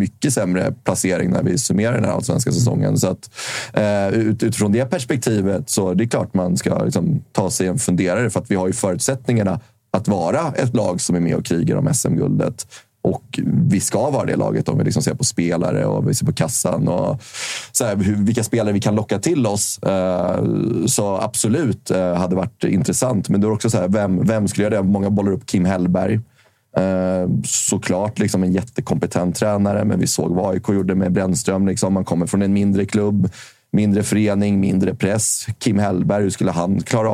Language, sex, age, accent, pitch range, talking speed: Swedish, male, 30-49, native, 95-110 Hz, 200 wpm